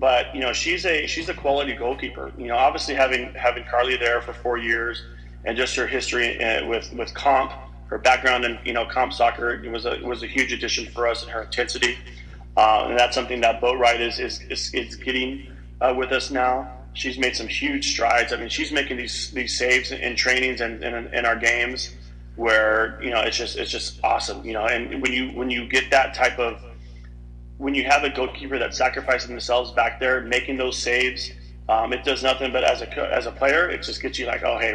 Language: English